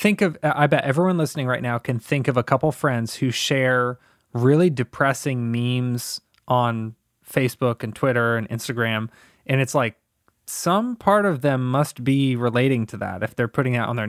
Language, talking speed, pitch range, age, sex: English, 185 wpm, 120-145 Hz, 20-39, male